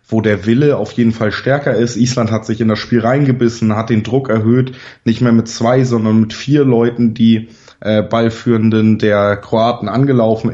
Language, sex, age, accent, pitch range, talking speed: German, male, 20-39, German, 110-125 Hz, 190 wpm